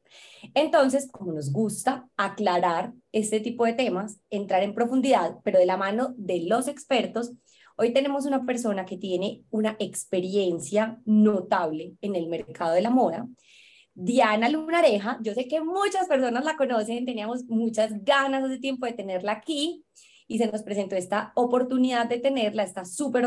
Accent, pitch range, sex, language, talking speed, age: Colombian, 200-260 Hz, female, Spanish, 155 wpm, 20-39